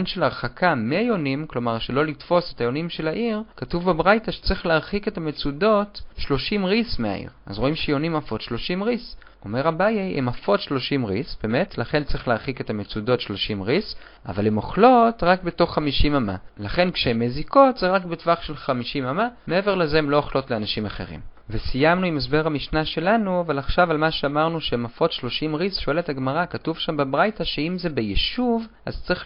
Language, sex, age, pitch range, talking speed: Hebrew, male, 30-49, 125-180 Hz, 175 wpm